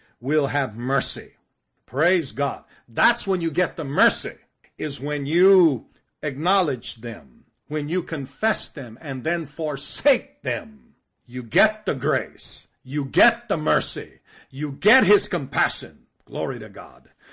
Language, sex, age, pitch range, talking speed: English, male, 50-69, 145-205 Hz, 140 wpm